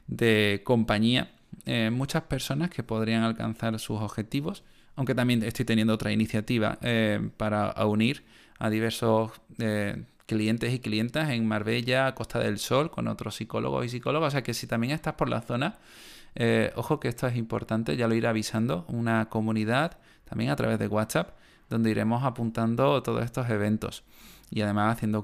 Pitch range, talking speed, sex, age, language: 110-125 Hz, 165 wpm, male, 20-39, Spanish